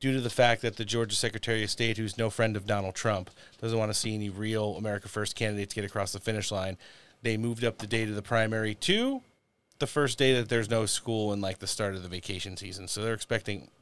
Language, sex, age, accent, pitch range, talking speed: English, male, 30-49, American, 100-120 Hz, 250 wpm